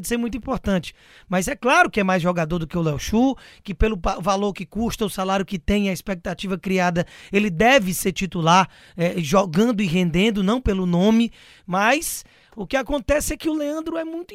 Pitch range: 185-245 Hz